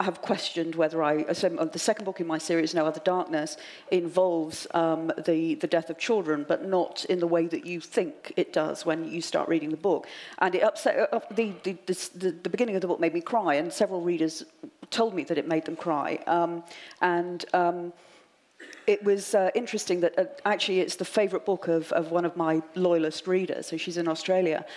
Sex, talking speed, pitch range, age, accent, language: female, 215 wpm, 165-200 Hz, 40-59, British, English